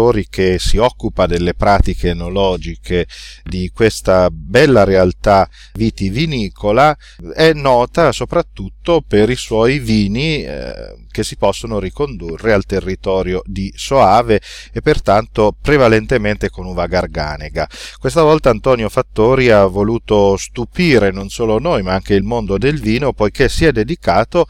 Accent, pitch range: native, 95-130 Hz